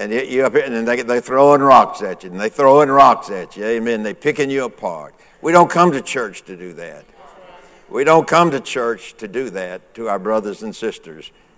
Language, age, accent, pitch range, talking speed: English, 60-79, American, 120-155 Hz, 225 wpm